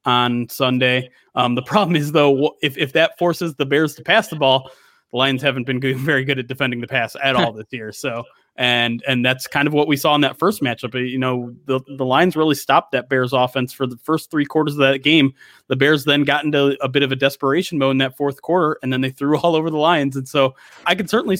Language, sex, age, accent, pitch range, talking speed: English, male, 30-49, American, 130-150 Hz, 255 wpm